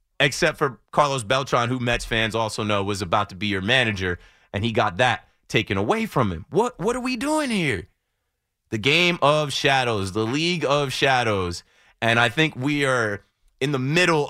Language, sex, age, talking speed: English, male, 30-49, 190 wpm